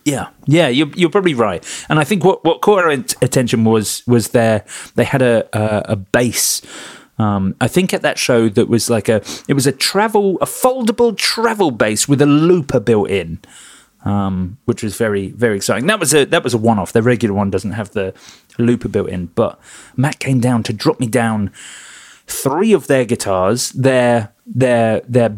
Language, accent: English, British